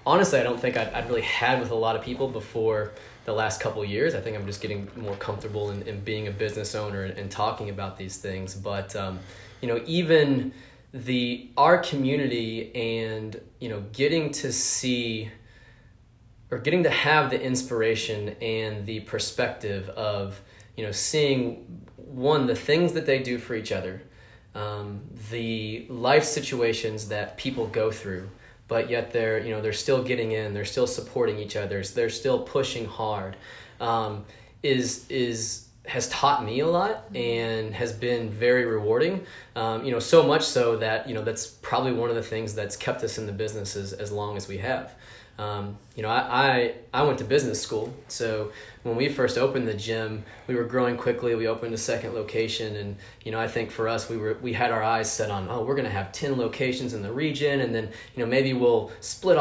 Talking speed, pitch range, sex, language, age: 195 wpm, 110-125 Hz, male, English, 20-39